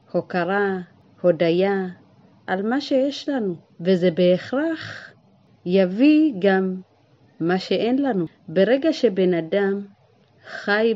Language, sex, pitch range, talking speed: Hebrew, female, 170-225 Hz, 95 wpm